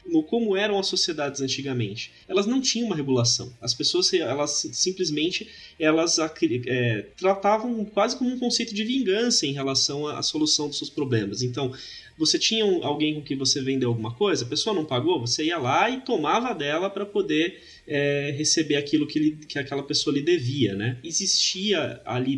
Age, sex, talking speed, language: 20-39, male, 165 wpm, Portuguese